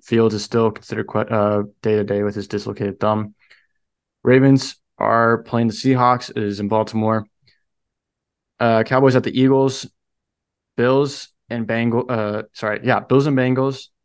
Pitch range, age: 105-120 Hz, 20-39